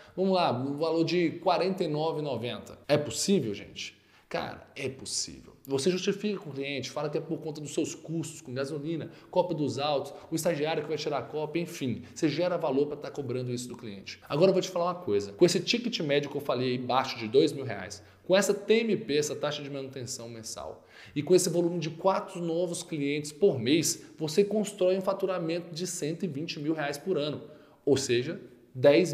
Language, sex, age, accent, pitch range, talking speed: Portuguese, male, 20-39, Brazilian, 140-180 Hz, 205 wpm